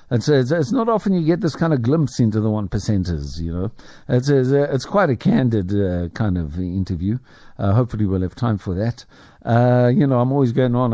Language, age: English, 60-79